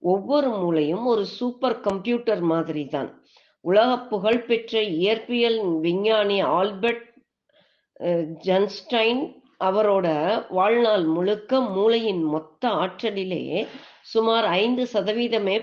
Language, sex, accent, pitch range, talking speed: Tamil, female, native, 185-235 Hz, 65 wpm